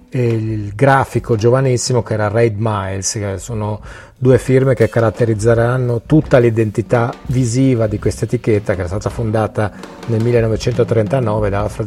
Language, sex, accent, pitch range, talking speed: Italian, male, native, 105-125 Hz, 125 wpm